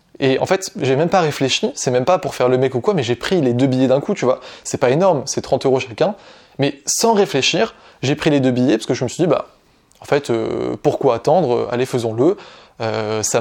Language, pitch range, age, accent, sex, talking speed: French, 130-165 Hz, 20-39, French, male, 255 wpm